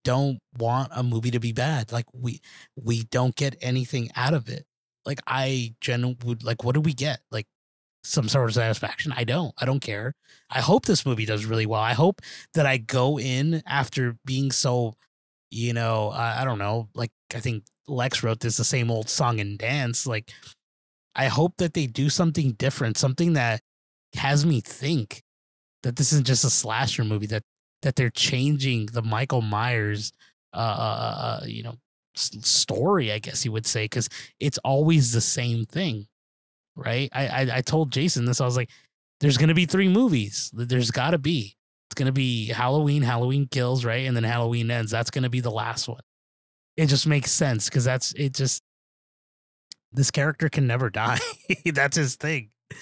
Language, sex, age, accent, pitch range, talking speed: English, male, 20-39, American, 115-140 Hz, 190 wpm